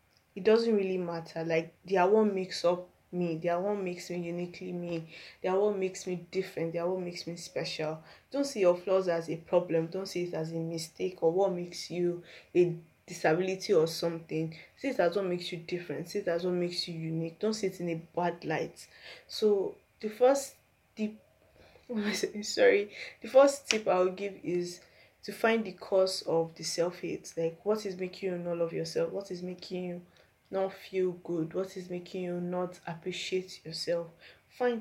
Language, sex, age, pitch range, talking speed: English, female, 10-29, 170-195 Hz, 195 wpm